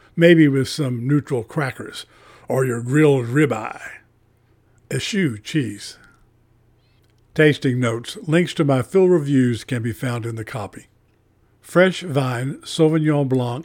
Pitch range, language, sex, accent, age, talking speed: 115-150 Hz, English, male, American, 50-69, 125 wpm